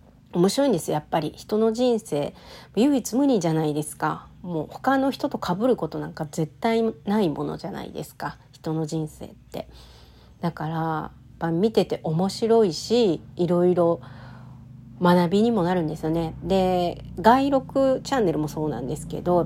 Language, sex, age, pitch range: Japanese, female, 40-59, 150-195 Hz